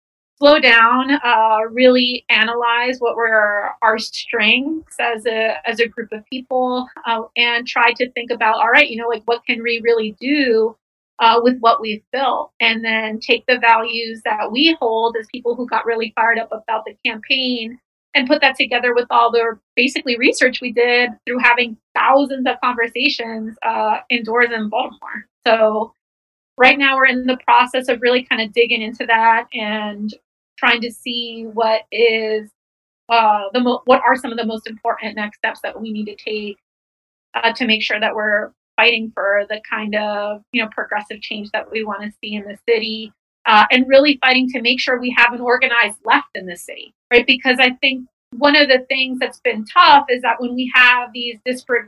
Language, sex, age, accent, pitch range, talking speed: English, female, 30-49, American, 220-255 Hz, 195 wpm